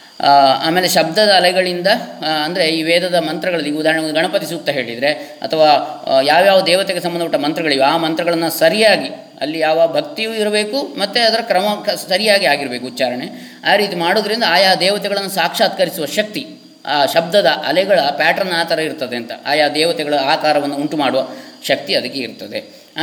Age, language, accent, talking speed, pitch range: 20-39, English, Indian, 100 wpm, 150-210 Hz